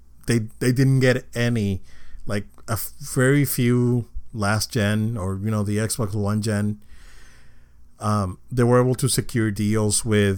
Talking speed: 155 wpm